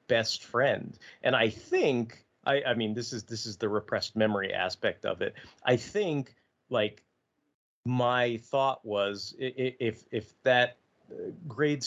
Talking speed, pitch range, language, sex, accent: 140 wpm, 110-165 Hz, English, male, American